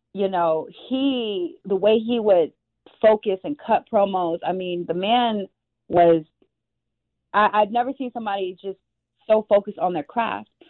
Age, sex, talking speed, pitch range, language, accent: 30-49, female, 150 wpm, 190-240 Hz, English, American